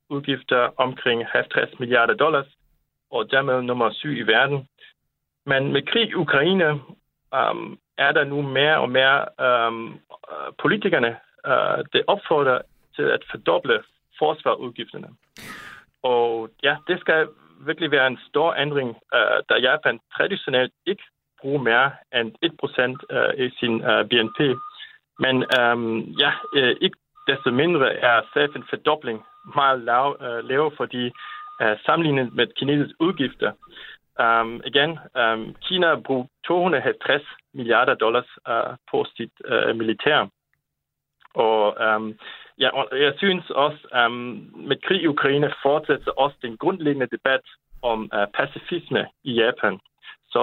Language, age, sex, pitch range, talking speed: Danish, 40-59, male, 120-170 Hz, 130 wpm